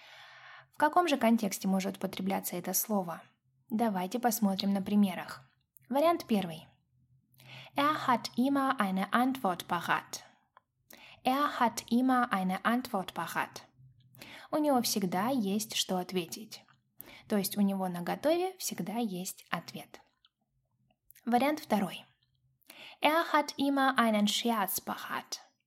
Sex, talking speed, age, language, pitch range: female, 105 wpm, 10-29, Russian, 185-250 Hz